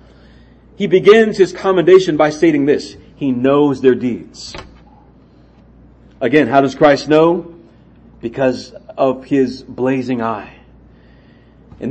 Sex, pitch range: male, 140-205 Hz